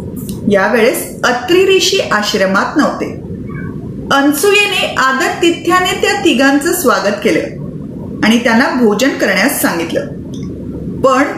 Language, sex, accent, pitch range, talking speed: Marathi, female, native, 245-320 Hz, 95 wpm